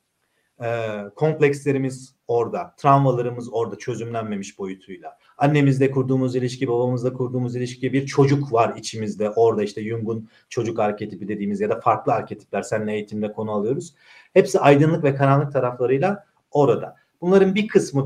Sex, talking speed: male, 135 wpm